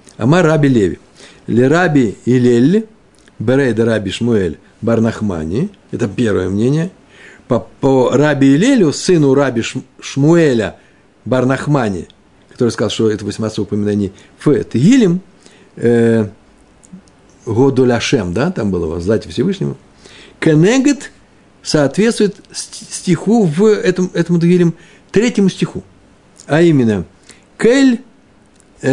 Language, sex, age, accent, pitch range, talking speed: Russian, male, 60-79, native, 115-175 Hz, 95 wpm